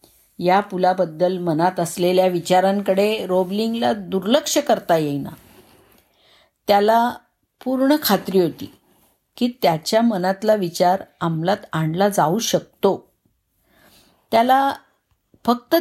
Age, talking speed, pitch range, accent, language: 50-69, 85 wpm, 160-210 Hz, native, Marathi